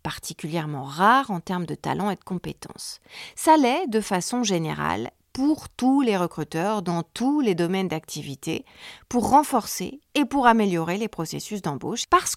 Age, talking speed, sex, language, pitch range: 40-59, 155 wpm, female, French, 175-250 Hz